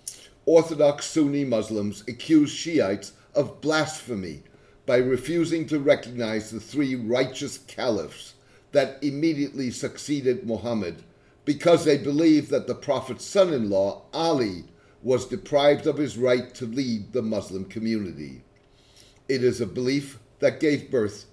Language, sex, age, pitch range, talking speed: English, male, 60-79, 120-150 Hz, 125 wpm